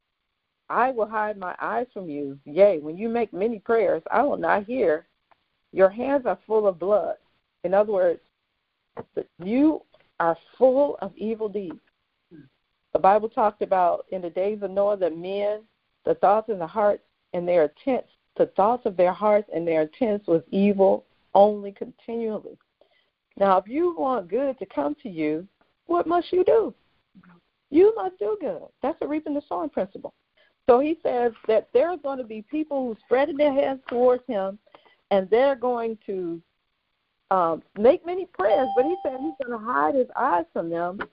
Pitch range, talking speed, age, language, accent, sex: 195-275 Hz, 180 wpm, 50-69, English, American, female